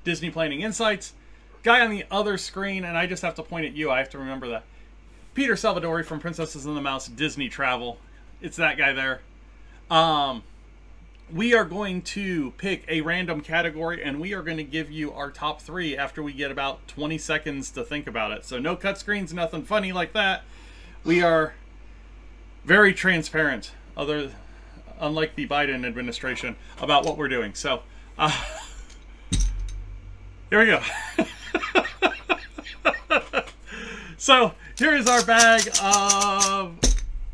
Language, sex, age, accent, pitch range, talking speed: English, male, 30-49, American, 140-200 Hz, 155 wpm